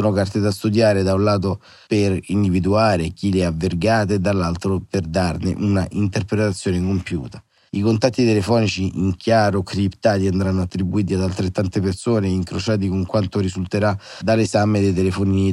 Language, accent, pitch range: Italian, native, 95-110 Hz